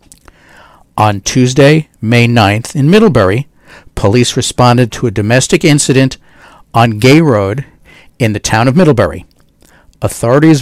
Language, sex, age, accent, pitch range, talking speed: English, male, 50-69, American, 115-160 Hz, 120 wpm